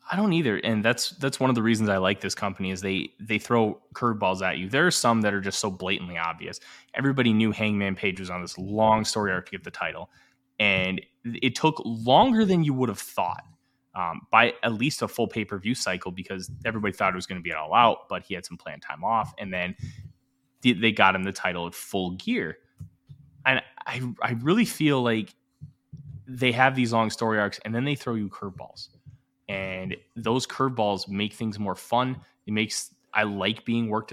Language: English